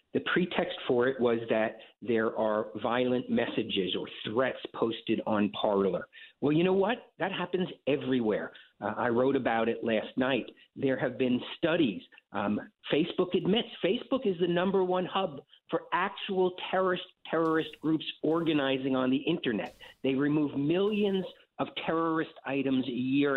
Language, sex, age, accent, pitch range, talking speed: English, male, 50-69, American, 135-190 Hz, 150 wpm